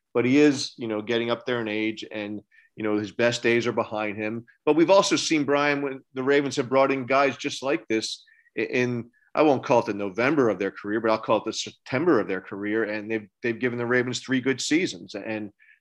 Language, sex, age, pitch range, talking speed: English, male, 40-59, 110-130 Hz, 240 wpm